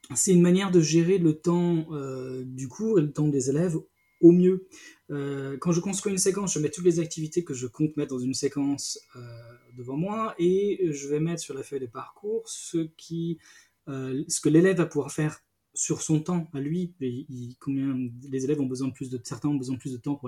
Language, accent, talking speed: French, French, 235 wpm